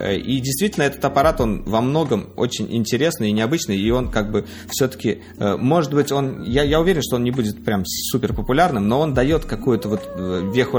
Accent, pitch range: native, 95-125 Hz